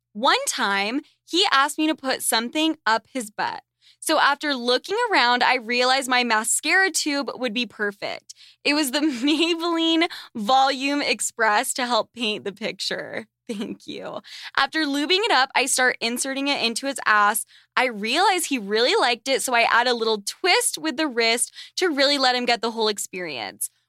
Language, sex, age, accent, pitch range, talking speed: English, female, 10-29, American, 230-310 Hz, 175 wpm